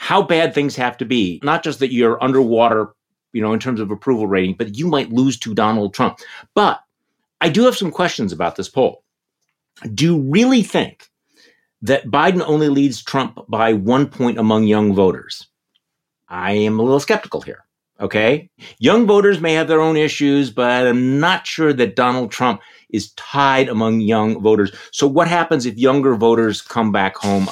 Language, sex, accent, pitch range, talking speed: English, male, American, 110-160 Hz, 185 wpm